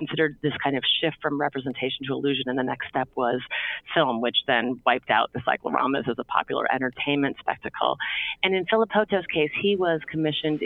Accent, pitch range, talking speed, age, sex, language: American, 140-175 Hz, 190 wpm, 30-49, female, English